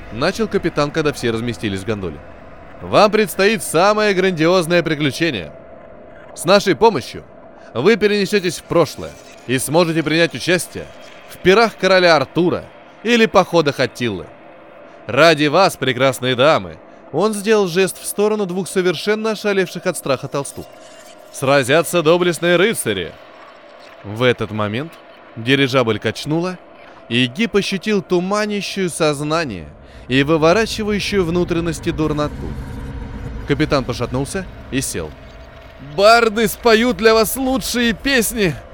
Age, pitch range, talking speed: 20-39, 130-205 Hz, 110 wpm